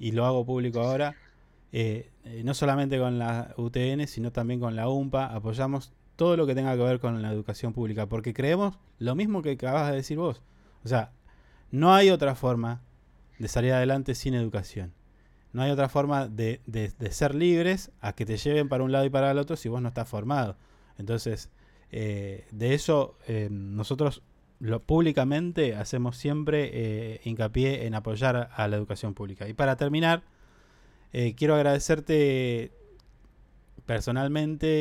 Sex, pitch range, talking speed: male, 115-140 Hz, 165 wpm